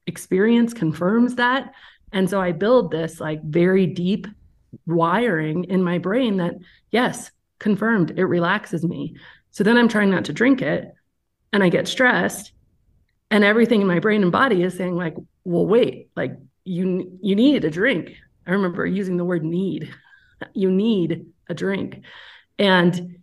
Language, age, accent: English, 30-49, American